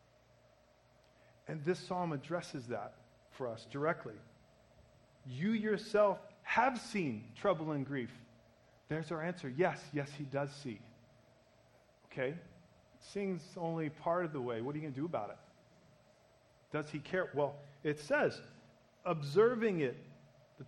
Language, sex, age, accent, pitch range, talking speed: English, male, 40-59, American, 120-155 Hz, 140 wpm